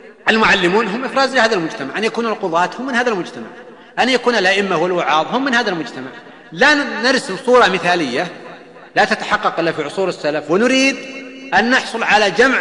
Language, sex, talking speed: Arabic, male, 165 wpm